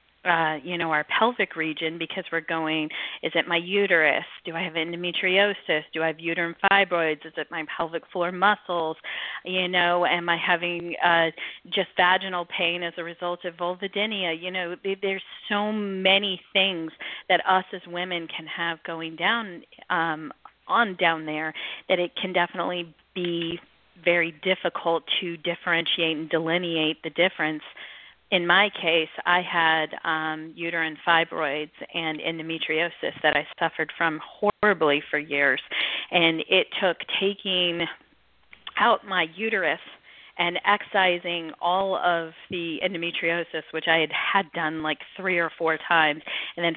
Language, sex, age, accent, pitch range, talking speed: English, female, 40-59, American, 160-185 Hz, 145 wpm